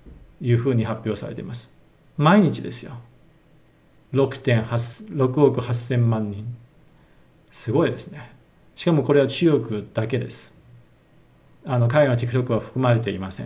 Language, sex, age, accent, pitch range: Japanese, male, 50-69, native, 115-145 Hz